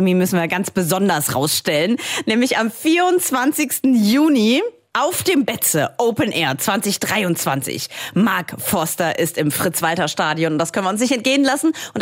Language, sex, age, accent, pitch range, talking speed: German, female, 30-49, German, 185-260 Hz, 140 wpm